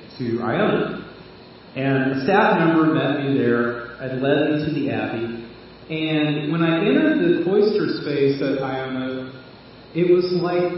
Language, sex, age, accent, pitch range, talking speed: English, male, 40-59, American, 135-175 Hz, 150 wpm